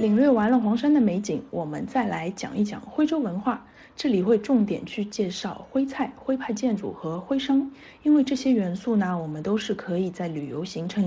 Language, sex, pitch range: Chinese, female, 200-265 Hz